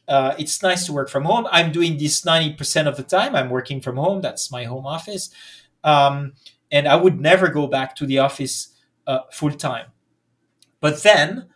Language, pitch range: English, 135-170 Hz